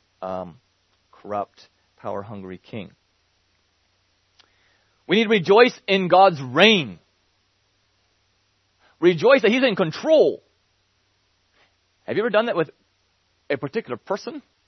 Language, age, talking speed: English, 30-49, 100 wpm